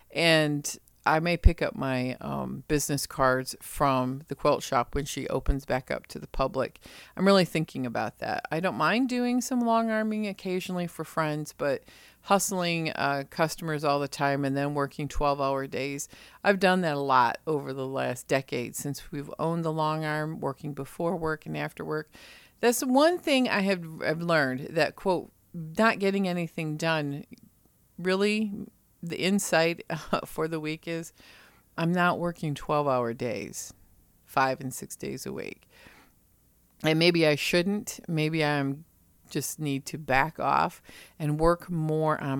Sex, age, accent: female, 40-59, American